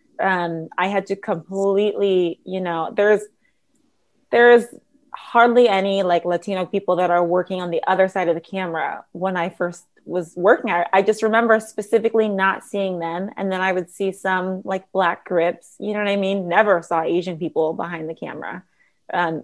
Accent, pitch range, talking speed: American, 175-210 Hz, 180 wpm